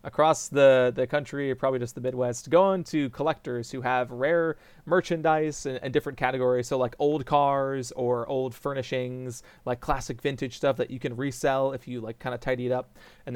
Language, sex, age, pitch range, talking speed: English, male, 30-49, 125-160 Hz, 190 wpm